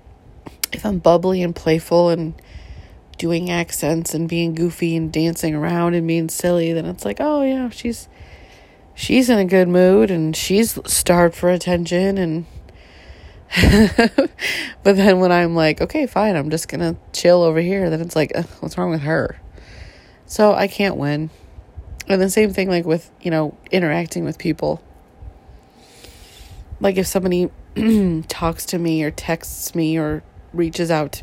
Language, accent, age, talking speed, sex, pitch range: English, American, 30-49, 160 wpm, female, 135-175 Hz